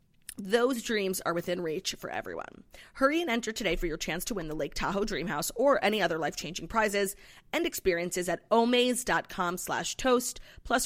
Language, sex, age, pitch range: English, female, 30-49, 185-245 Hz